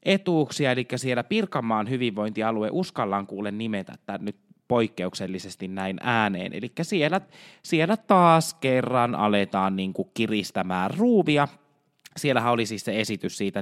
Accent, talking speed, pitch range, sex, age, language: native, 125 wpm, 105-155 Hz, male, 20-39, Finnish